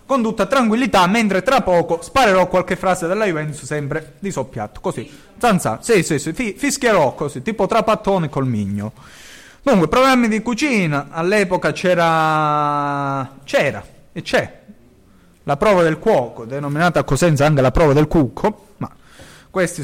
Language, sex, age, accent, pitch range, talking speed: Italian, male, 20-39, native, 145-195 Hz, 140 wpm